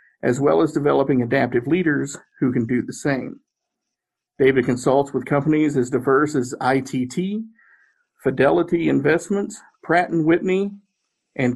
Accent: American